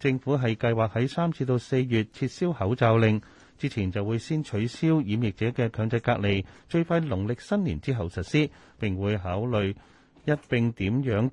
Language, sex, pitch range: Chinese, male, 105-145 Hz